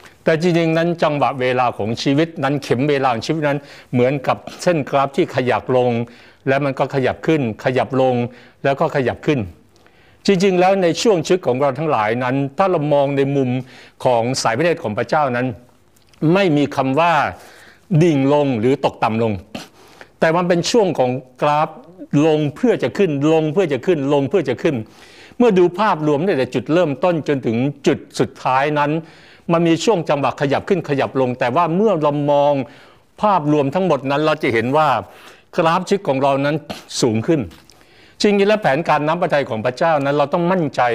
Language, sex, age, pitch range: Thai, male, 60-79, 130-170 Hz